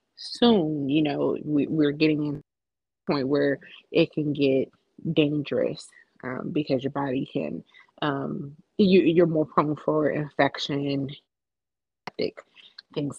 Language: English